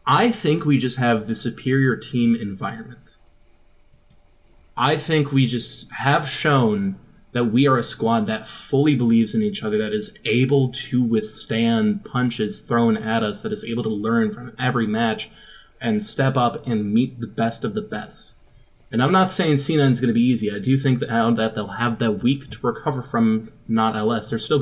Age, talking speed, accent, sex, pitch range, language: 20-39, 190 wpm, American, male, 115-145 Hz, English